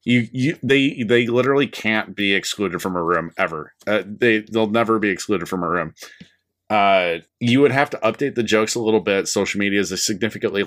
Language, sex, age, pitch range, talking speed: English, male, 30-49, 95-110 Hz, 210 wpm